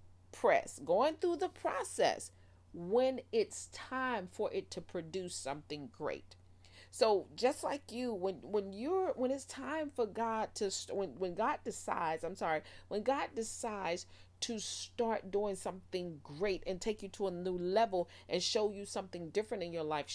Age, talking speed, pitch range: 40-59, 165 wpm, 175-245 Hz